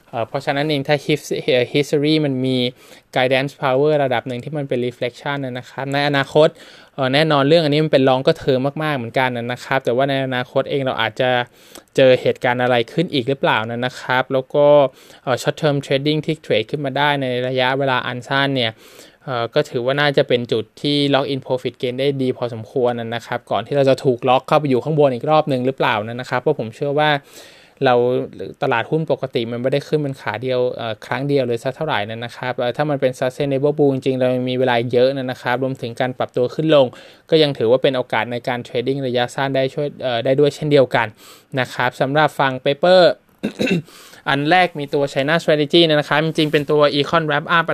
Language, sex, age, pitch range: Thai, male, 20-39, 125-150 Hz